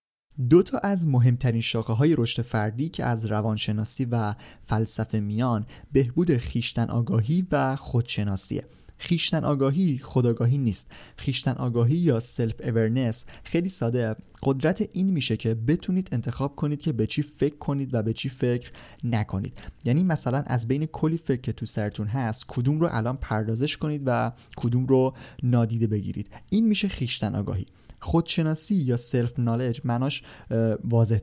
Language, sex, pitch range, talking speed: Persian, male, 115-145 Hz, 145 wpm